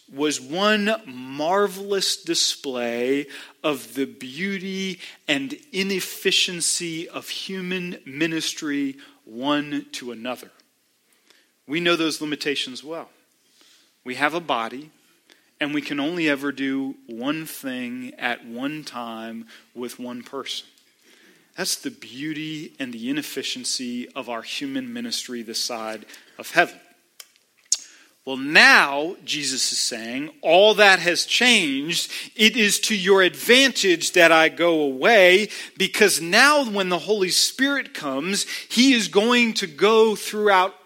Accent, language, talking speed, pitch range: American, English, 120 wpm, 150-245 Hz